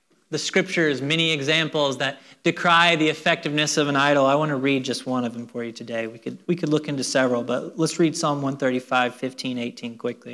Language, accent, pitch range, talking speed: English, American, 130-150 Hz, 215 wpm